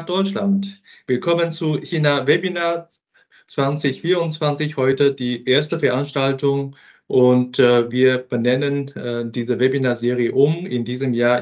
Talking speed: 110 wpm